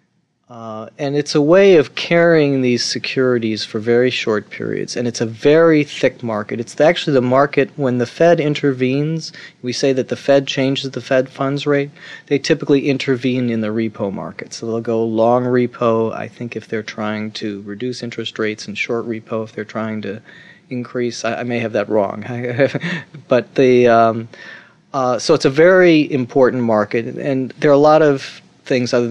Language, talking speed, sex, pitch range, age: English, 185 wpm, male, 115-150 Hz, 40-59